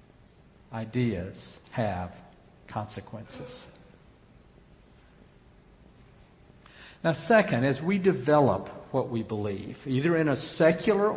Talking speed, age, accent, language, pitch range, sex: 80 wpm, 60-79, American, English, 120-155 Hz, male